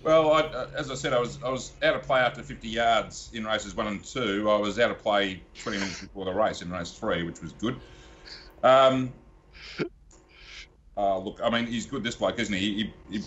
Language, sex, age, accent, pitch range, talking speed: English, male, 40-59, Australian, 90-120 Hz, 220 wpm